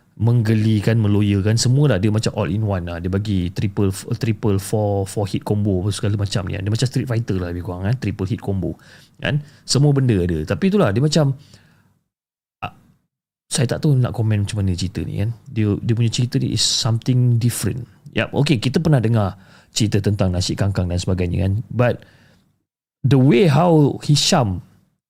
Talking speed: 180 wpm